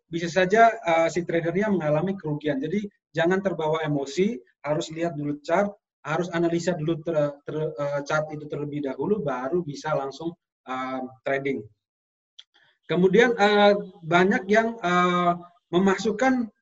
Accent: native